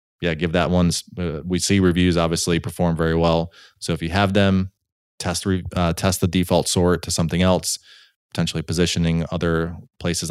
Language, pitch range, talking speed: English, 85-100 Hz, 175 wpm